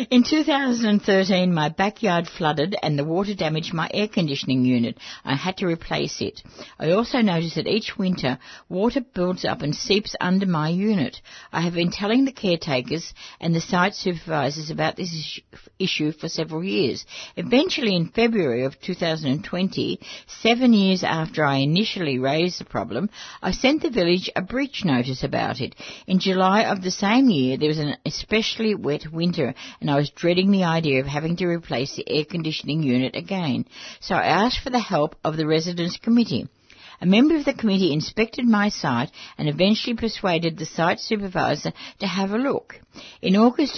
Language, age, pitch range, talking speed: English, 60-79, 155-210 Hz, 175 wpm